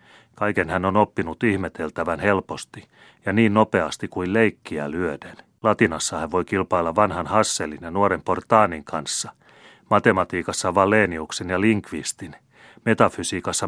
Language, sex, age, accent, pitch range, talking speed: Finnish, male, 30-49, native, 90-115 Hz, 120 wpm